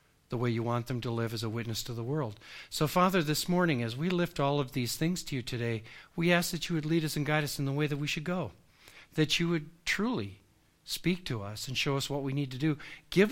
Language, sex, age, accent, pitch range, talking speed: English, male, 60-79, American, 120-155 Hz, 270 wpm